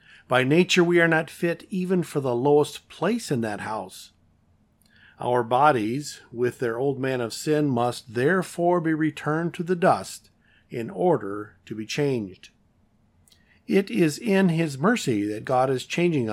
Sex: male